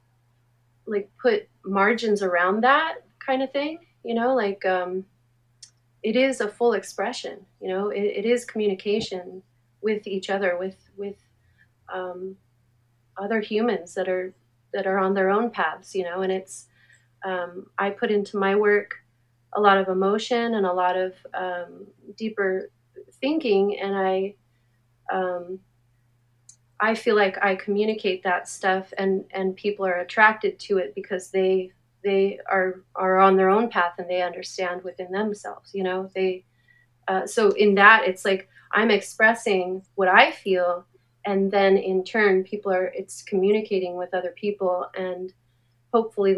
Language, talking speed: English, 155 wpm